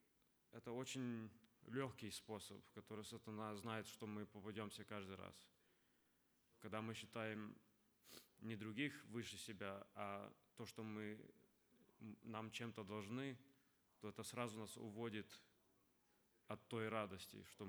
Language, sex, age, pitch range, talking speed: Russian, male, 20-39, 105-120 Hz, 120 wpm